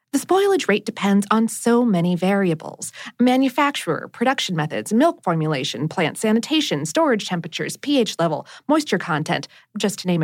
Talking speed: 140 wpm